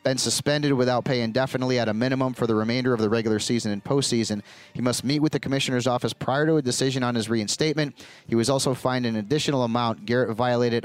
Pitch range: 105-140 Hz